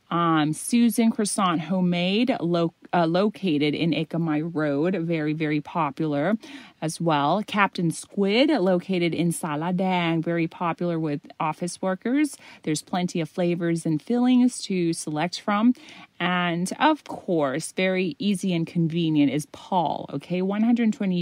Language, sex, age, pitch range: Thai, female, 30-49, 160-205 Hz